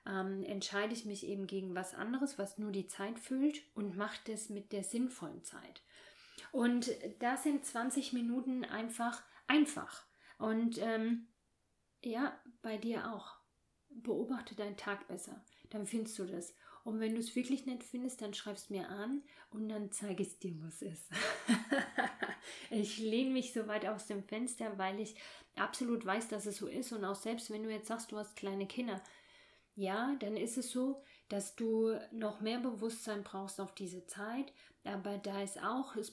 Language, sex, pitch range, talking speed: German, female, 200-245 Hz, 175 wpm